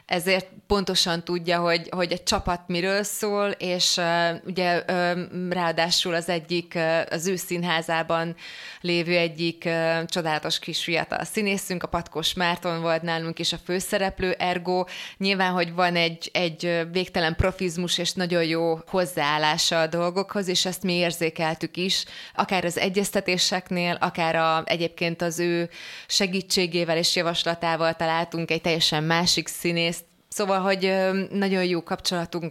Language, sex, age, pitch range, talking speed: Hungarian, female, 20-39, 165-185 Hz, 135 wpm